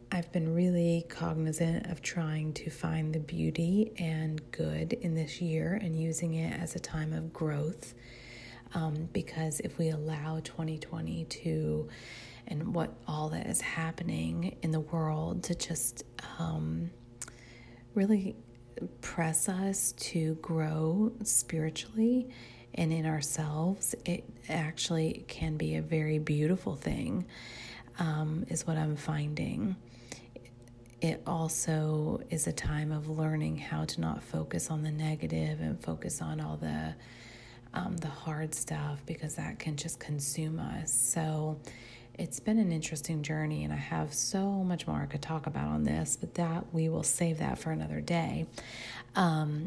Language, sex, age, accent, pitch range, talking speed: English, female, 30-49, American, 120-165 Hz, 145 wpm